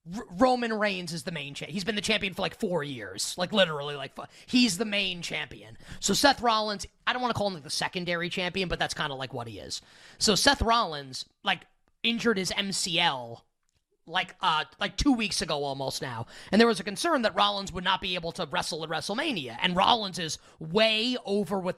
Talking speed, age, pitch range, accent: 215 wpm, 30-49, 160-210 Hz, American